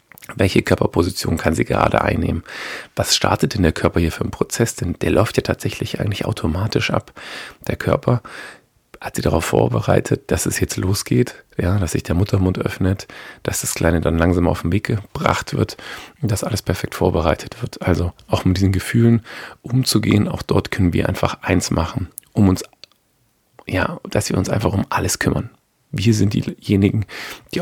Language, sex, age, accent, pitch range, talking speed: German, male, 40-59, German, 85-110 Hz, 180 wpm